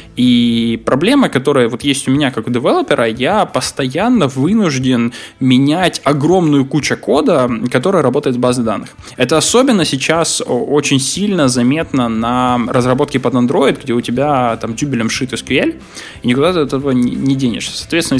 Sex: male